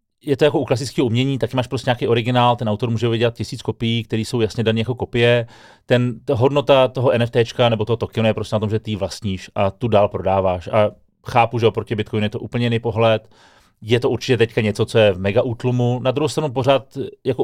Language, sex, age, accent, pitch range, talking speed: Czech, male, 30-49, native, 105-120 Hz, 230 wpm